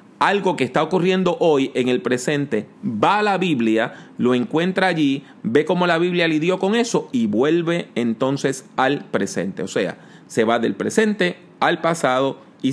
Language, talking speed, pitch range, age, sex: English, 170 wpm, 135-185 Hz, 40-59, male